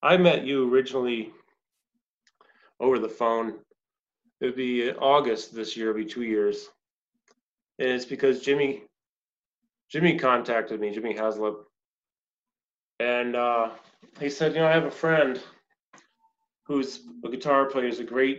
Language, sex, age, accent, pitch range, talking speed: English, male, 30-49, American, 115-175 Hz, 135 wpm